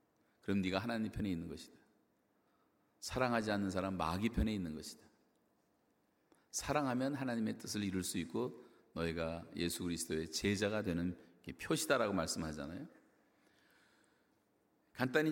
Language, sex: Korean, male